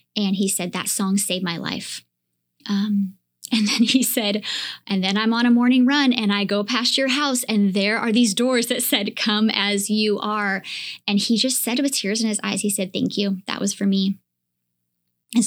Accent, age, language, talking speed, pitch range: American, 20-39, English, 215 wpm, 185-220 Hz